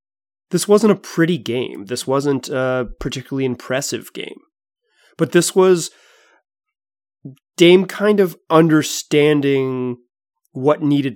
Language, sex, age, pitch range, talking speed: English, male, 30-49, 115-160 Hz, 110 wpm